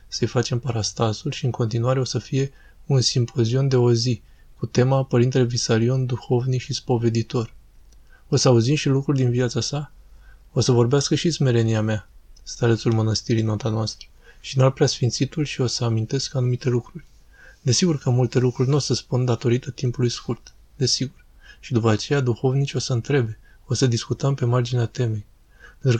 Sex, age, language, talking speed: male, 20-39, Romanian, 175 wpm